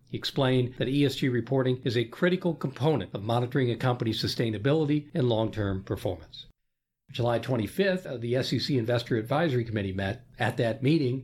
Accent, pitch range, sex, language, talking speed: American, 120-150 Hz, male, English, 150 wpm